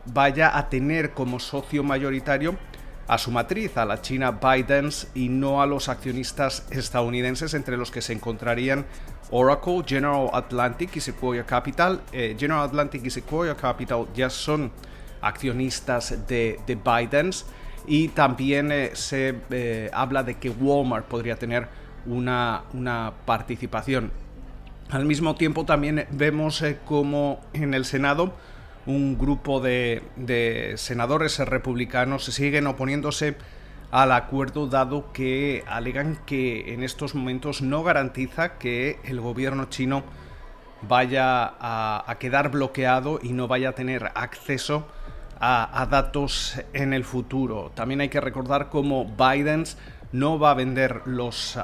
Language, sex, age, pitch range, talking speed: Spanish, male, 40-59, 125-140 Hz, 135 wpm